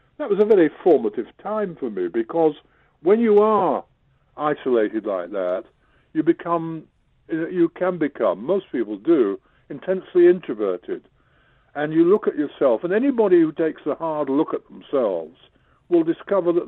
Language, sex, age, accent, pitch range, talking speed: English, female, 60-79, British, 130-195 Hz, 150 wpm